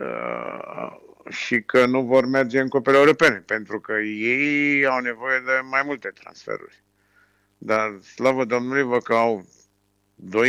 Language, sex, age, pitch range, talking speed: Romanian, male, 50-69, 100-125 Hz, 145 wpm